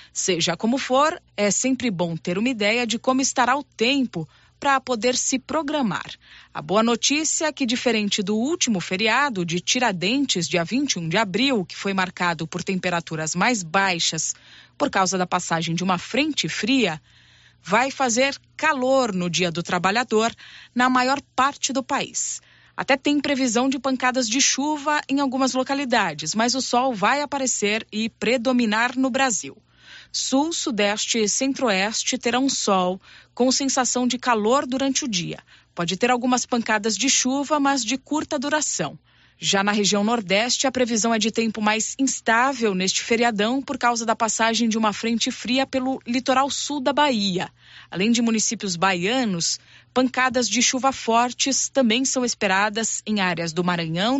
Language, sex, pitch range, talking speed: Portuguese, female, 200-265 Hz, 160 wpm